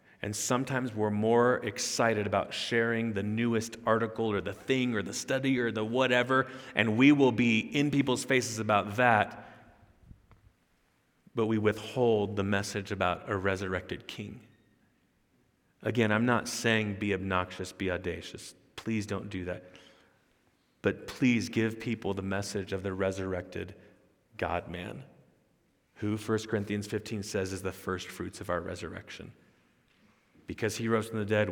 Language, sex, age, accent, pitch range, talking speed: English, male, 30-49, American, 95-115 Hz, 145 wpm